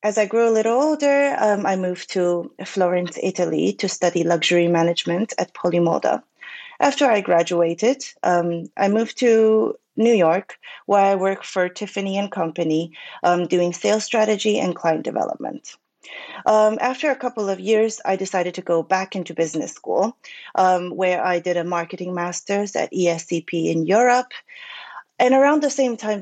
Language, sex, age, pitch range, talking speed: English, female, 30-49, 175-220 Hz, 160 wpm